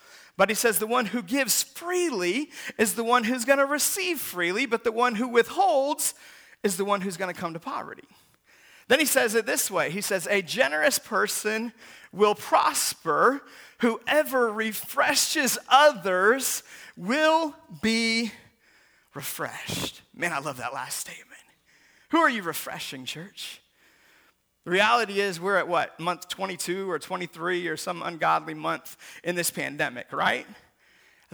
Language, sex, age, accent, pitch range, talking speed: English, male, 40-59, American, 180-245 Hz, 155 wpm